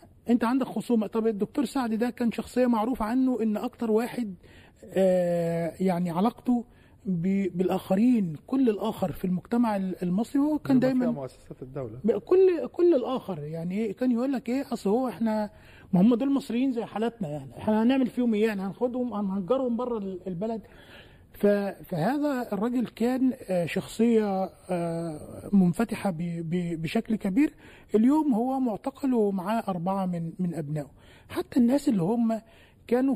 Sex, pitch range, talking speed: male, 185-240 Hz, 135 wpm